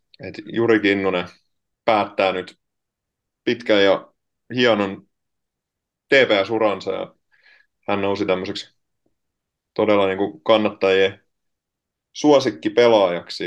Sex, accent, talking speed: male, native, 80 wpm